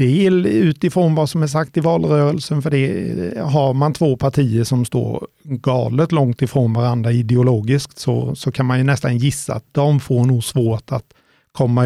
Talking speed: 170 wpm